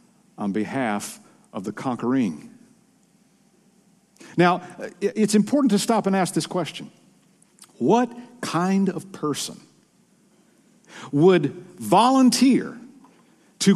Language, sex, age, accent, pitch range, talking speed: English, male, 50-69, American, 155-220 Hz, 90 wpm